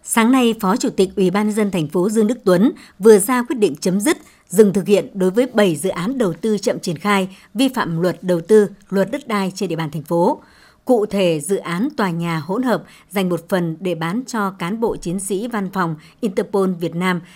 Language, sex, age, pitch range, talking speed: Vietnamese, male, 60-79, 185-220 Hz, 235 wpm